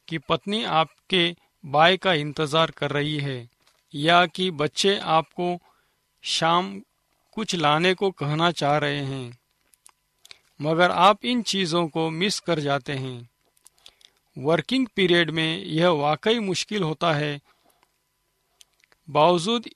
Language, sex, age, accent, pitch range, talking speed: Hindi, male, 50-69, native, 155-195 Hz, 115 wpm